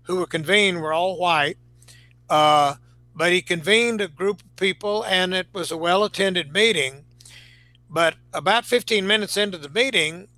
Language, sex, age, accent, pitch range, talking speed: English, male, 60-79, American, 125-175 Hz, 155 wpm